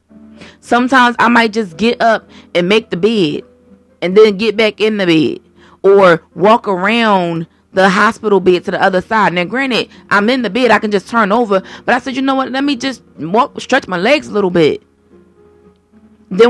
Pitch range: 195-230 Hz